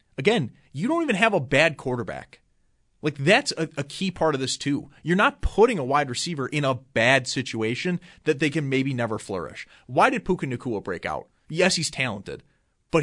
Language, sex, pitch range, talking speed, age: English, male, 120-155 Hz, 200 wpm, 30-49